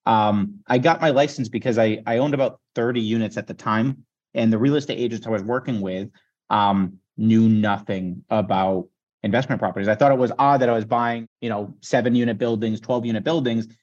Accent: American